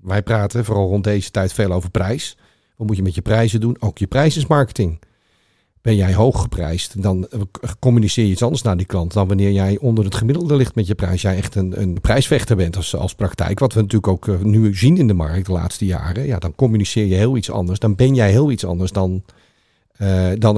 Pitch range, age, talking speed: 95-115 Hz, 40-59, 235 wpm